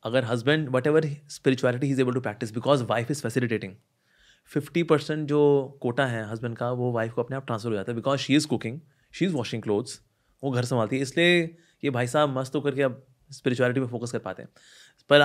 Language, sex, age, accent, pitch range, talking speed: Hindi, male, 30-49, native, 120-150 Hz, 220 wpm